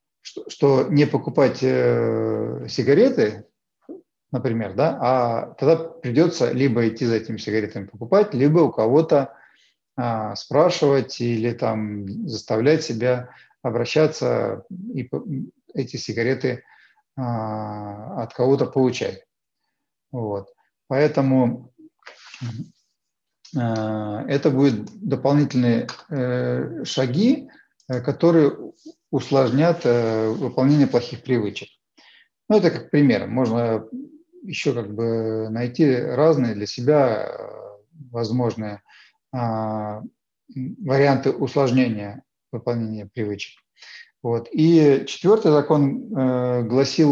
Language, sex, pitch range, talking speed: Russian, male, 115-145 Hz, 85 wpm